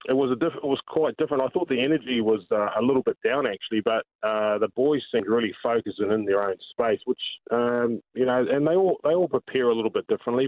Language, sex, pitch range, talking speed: English, male, 100-125 Hz, 260 wpm